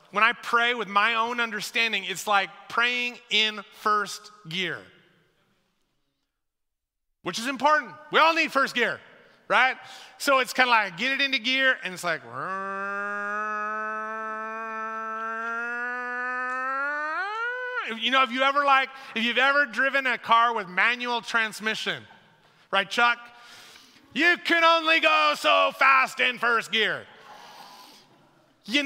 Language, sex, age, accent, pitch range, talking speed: English, male, 30-49, American, 185-250 Hz, 120 wpm